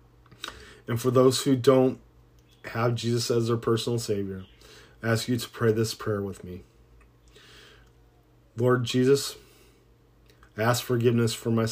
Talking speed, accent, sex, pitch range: 140 wpm, American, male, 95-120 Hz